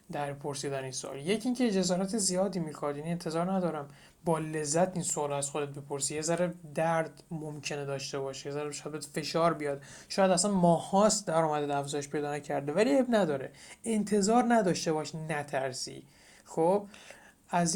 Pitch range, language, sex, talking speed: 150-200 Hz, Persian, male, 165 wpm